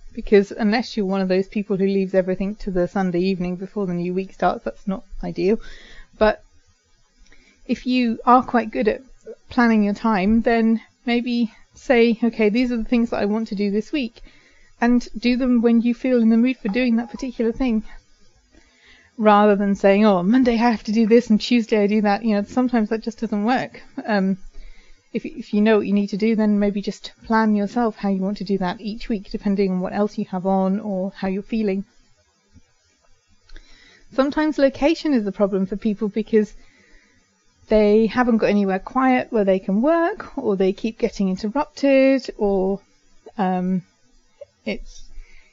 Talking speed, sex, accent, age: 185 wpm, female, British, 30-49